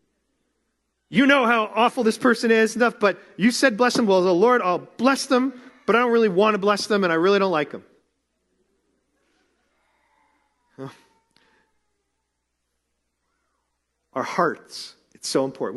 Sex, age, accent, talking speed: male, 40-59, American, 150 wpm